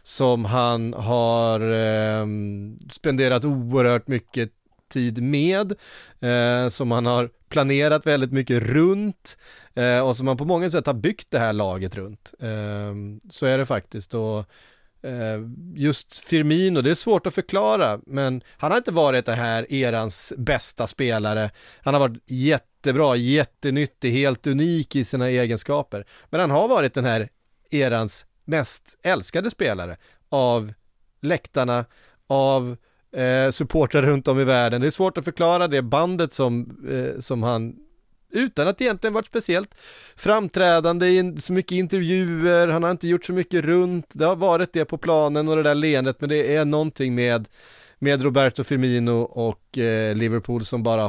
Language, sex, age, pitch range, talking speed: English, male, 30-49, 115-155 Hz, 155 wpm